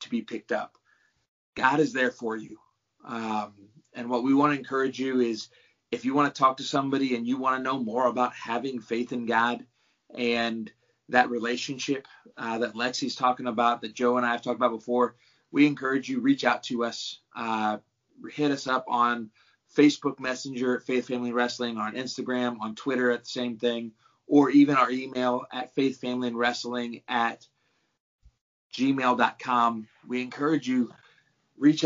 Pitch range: 120-135 Hz